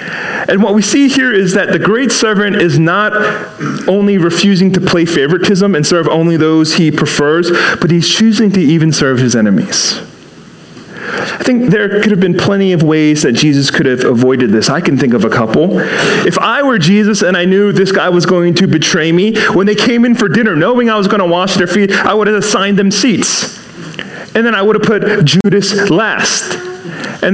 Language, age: English, 30-49